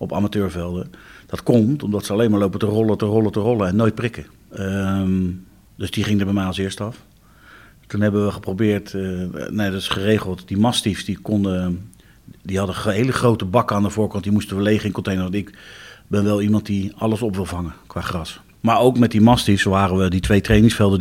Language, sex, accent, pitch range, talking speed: Dutch, male, Dutch, 95-110 Hz, 215 wpm